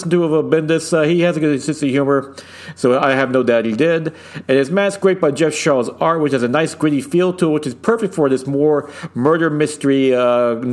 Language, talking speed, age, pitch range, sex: English, 240 wpm, 40-59, 135-180 Hz, male